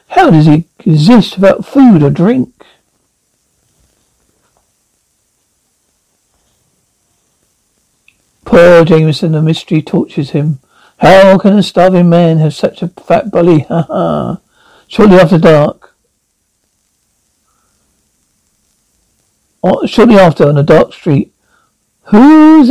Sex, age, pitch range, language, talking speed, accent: male, 60-79, 160-220 Hz, English, 90 wpm, British